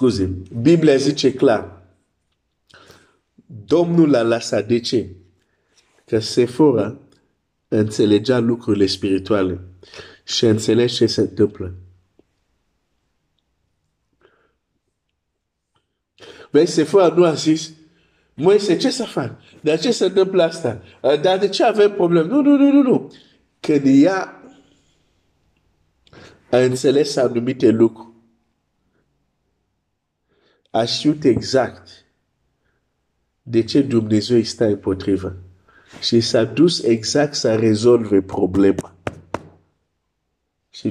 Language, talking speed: Romanian, 95 wpm